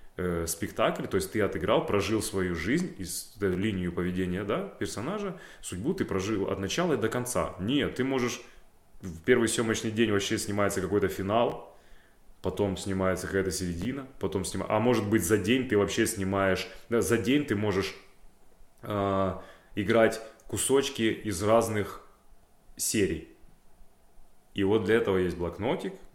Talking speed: 150 wpm